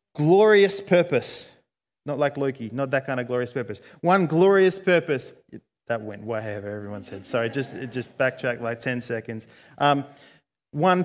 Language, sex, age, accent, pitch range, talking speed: English, male, 30-49, Australian, 125-150 Hz, 155 wpm